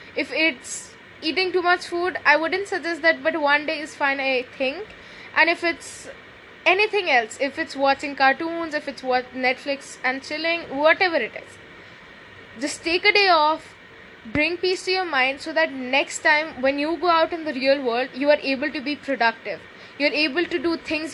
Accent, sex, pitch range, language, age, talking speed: Indian, female, 265-320 Hz, English, 10-29, 195 wpm